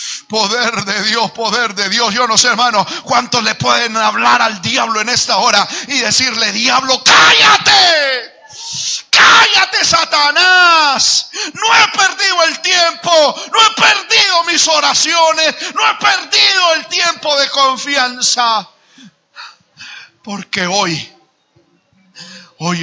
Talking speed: 120 wpm